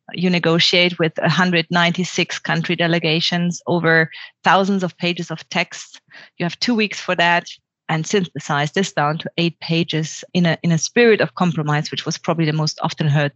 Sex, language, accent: female, English, German